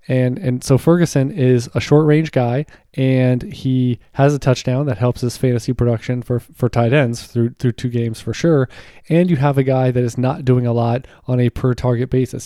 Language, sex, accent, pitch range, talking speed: English, male, American, 120-140 Hz, 215 wpm